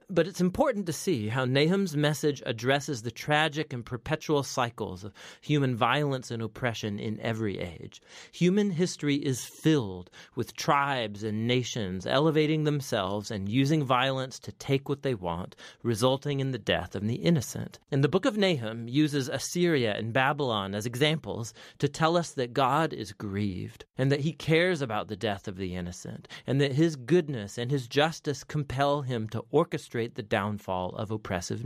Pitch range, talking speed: 110-155 Hz, 170 wpm